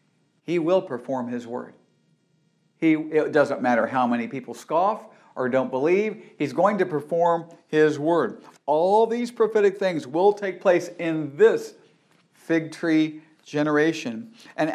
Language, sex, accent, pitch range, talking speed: English, male, American, 140-190 Hz, 140 wpm